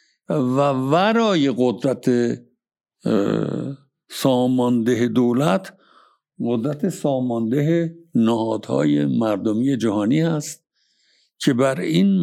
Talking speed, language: 70 wpm, Persian